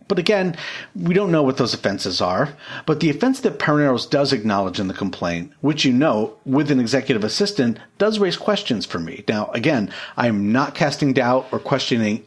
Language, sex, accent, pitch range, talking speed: English, male, American, 120-170 Hz, 195 wpm